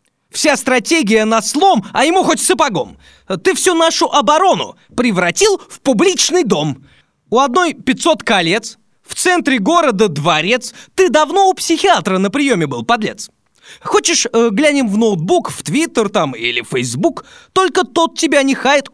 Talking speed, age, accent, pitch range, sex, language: 150 wpm, 20-39, native, 205-305 Hz, male, Russian